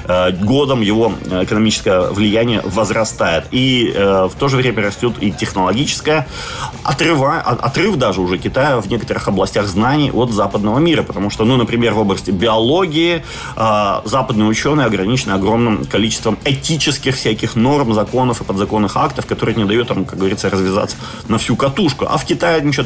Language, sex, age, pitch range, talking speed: Ukrainian, male, 30-49, 105-125 Hz, 160 wpm